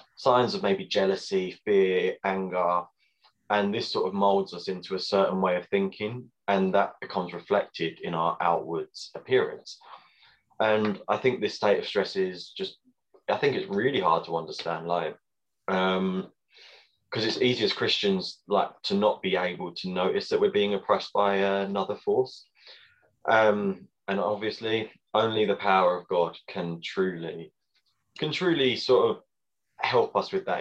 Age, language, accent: 20-39, English, British